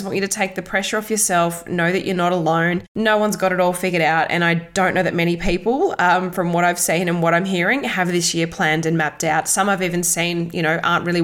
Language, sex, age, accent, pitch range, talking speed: English, female, 20-39, Australian, 170-205 Hz, 270 wpm